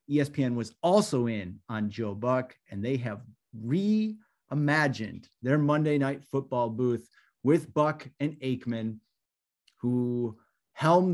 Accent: American